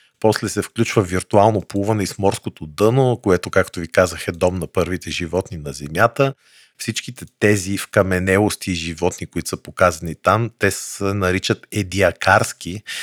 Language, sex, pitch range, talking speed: Bulgarian, male, 90-110 Hz, 145 wpm